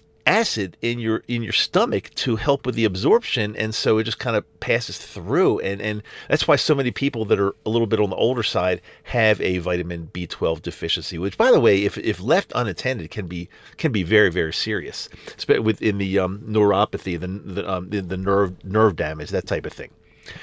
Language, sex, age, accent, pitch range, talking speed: English, male, 40-59, American, 95-135 Hz, 210 wpm